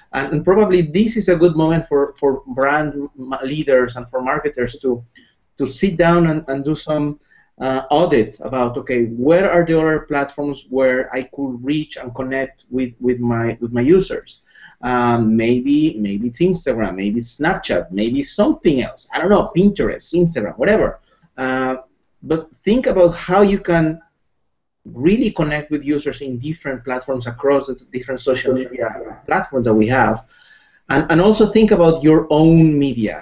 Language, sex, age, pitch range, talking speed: English, male, 30-49, 125-160 Hz, 165 wpm